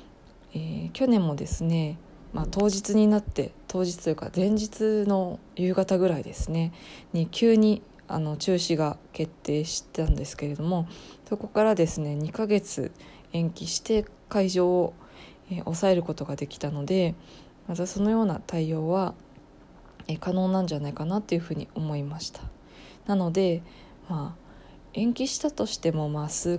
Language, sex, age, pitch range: Japanese, female, 20-39, 155-200 Hz